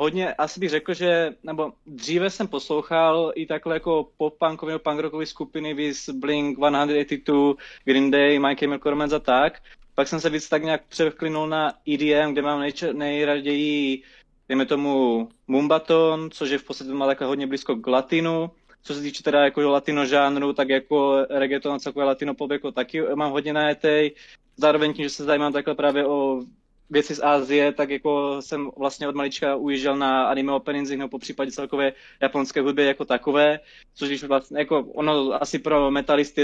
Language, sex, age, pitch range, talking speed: Czech, male, 20-39, 140-150 Hz, 165 wpm